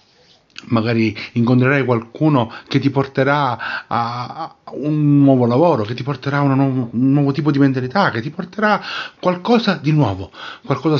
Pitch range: 115-140 Hz